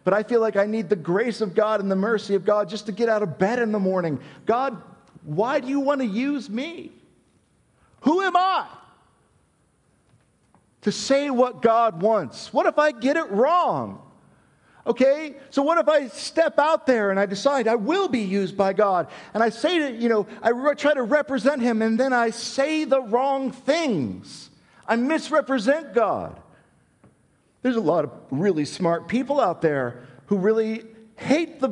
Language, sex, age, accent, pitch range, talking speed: English, male, 50-69, American, 200-280 Hz, 185 wpm